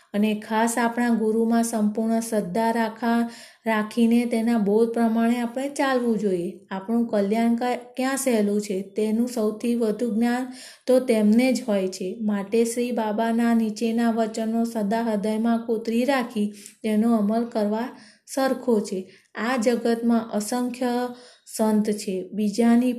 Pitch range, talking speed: 215-245 Hz, 125 wpm